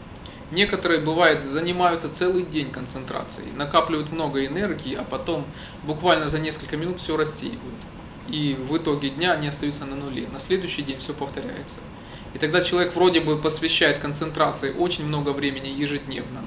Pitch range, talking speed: 140-170 Hz, 150 wpm